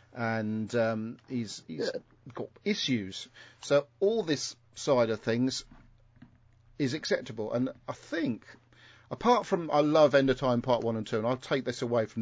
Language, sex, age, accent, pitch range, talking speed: English, male, 40-59, British, 110-125 Hz, 170 wpm